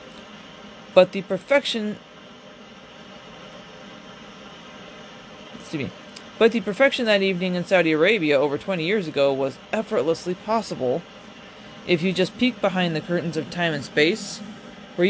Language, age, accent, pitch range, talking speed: English, 30-49, American, 155-200 Hz, 125 wpm